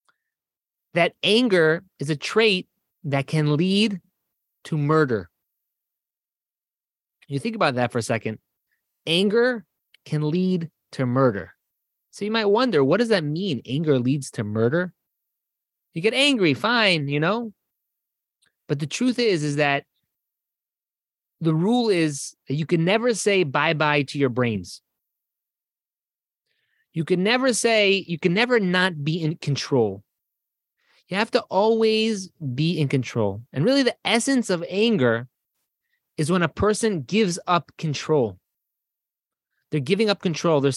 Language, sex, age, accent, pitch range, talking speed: English, male, 30-49, American, 140-195 Hz, 140 wpm